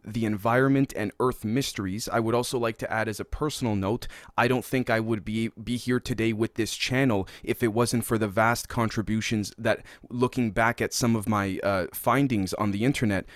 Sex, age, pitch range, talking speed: male, 20-39, 110-130 Hz, 205 wpm